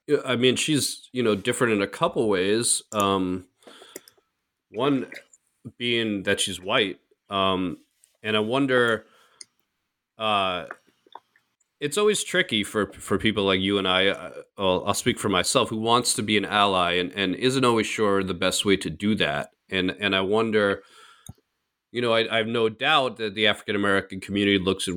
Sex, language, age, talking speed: male, English, 30-49, 170 wpm